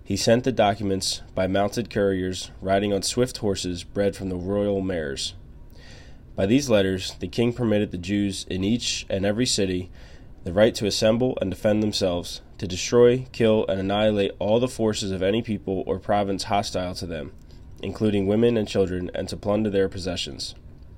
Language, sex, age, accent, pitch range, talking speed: English, male, 20-39, American, 95-110 Hz, 175 wpm